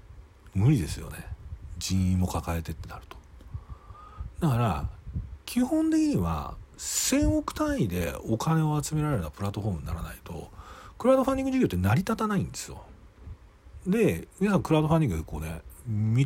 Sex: male